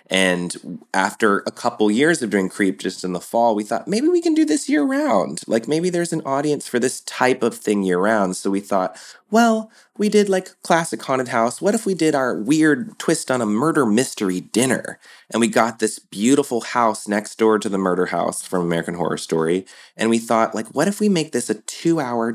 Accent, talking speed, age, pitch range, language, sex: American, 215 wpm, 20-39, 90-120 Hz, English, male